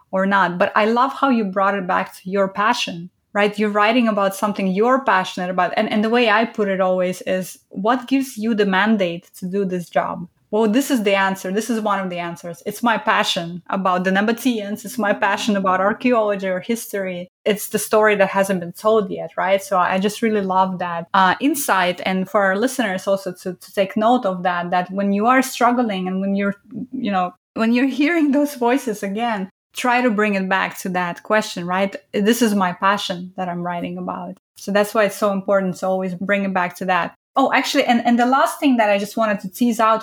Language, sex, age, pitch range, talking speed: English, female, 20-39, 190-235 Hz, 225 wpm